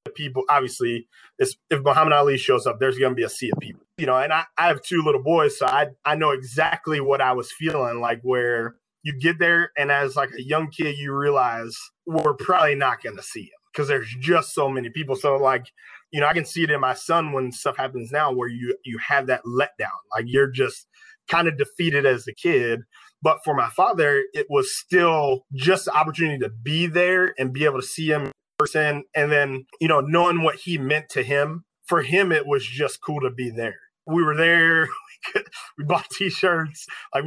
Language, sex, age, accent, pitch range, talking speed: English, male, 20-39, American, 135-170 Hz, 220 wpm